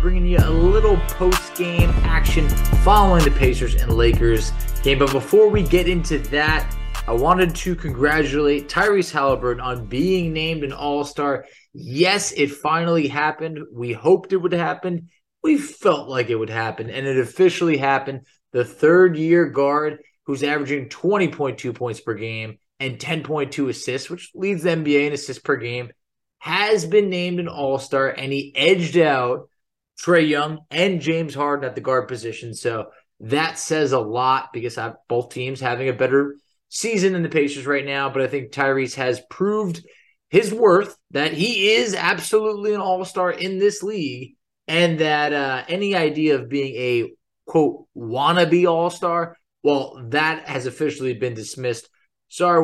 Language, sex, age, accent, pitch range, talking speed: English, male, 20-39, American, 130-175 Hz, 160 wpm